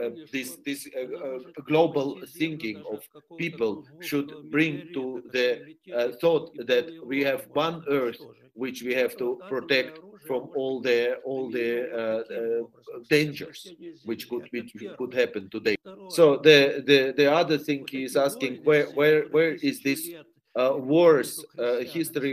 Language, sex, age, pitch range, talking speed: English, male, 40-59, 130-165 Hz, 155 wpm